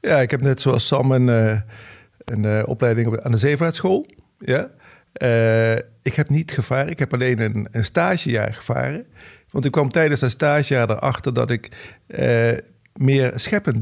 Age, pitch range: 50-69, 115-140 Hz